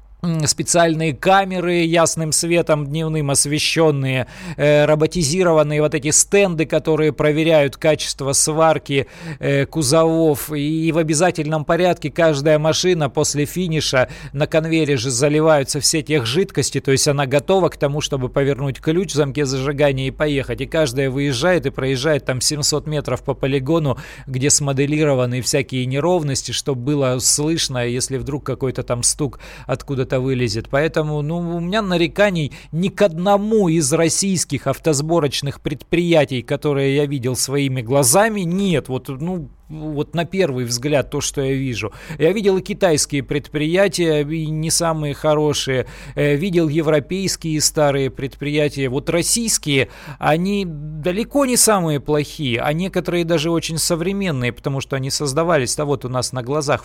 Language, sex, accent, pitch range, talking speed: Russian, male, native, 140-165 Hz, 140 wpm